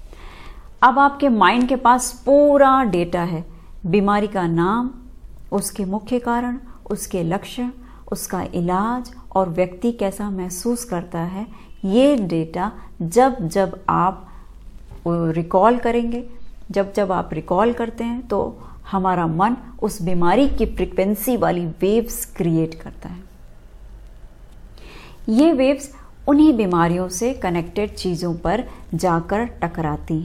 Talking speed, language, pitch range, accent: 115 wpm, Hindi, 175-235 Hz, native